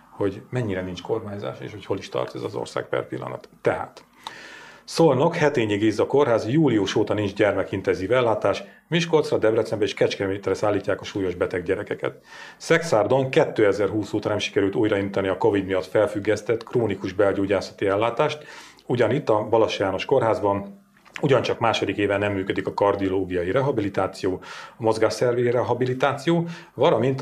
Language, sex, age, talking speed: Hungarian, male, 40-59, 140 wpm